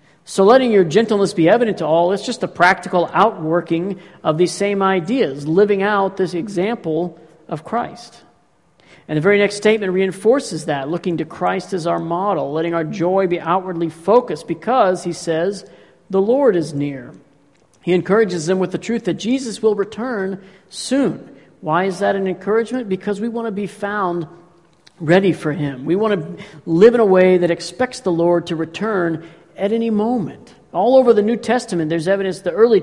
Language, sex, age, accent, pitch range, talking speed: English, male, 50-69, American, 170-220 Hz, 180 wpm